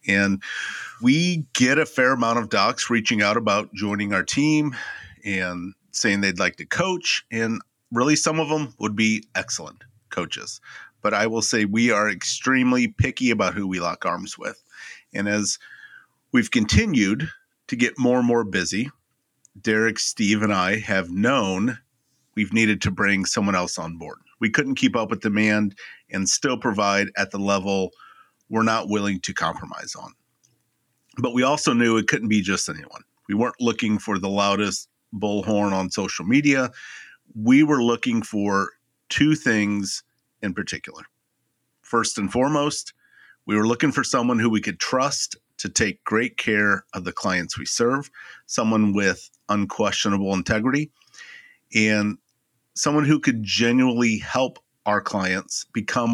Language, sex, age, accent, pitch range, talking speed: English, male, 40-59, American, 100-125 Hz, 155 wpm